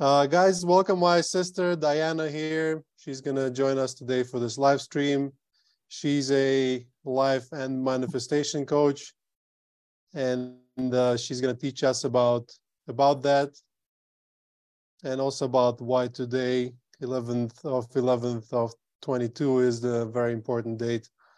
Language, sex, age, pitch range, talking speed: English, male, 20-39, 120-145 Hz, 135 wpm